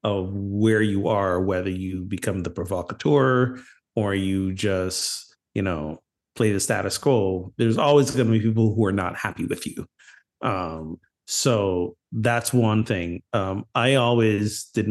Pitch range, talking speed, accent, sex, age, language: 90-110 Hz, 155 wpm, American, male, 30-49, English